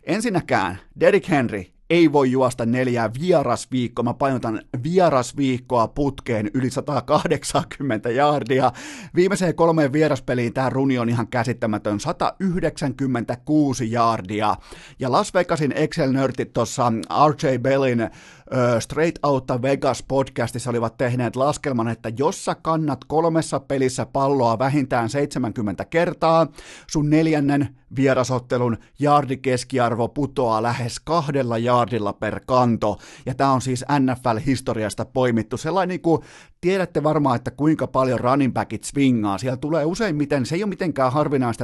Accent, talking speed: native, 115 wpm